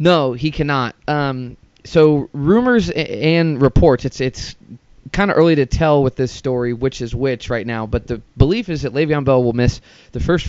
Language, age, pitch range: English, 20-39, 115-140 Hz